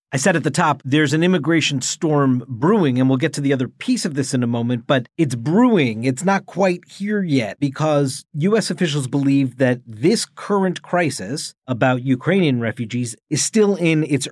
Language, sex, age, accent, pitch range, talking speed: English, male, 40-59, American, 135-185 Hz, 190 wpm